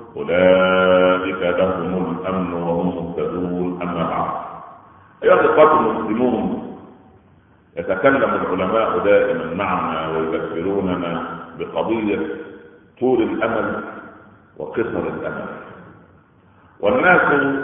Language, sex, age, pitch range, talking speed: Arabic, male, 50-69, 95-145 Hz, 70 wpm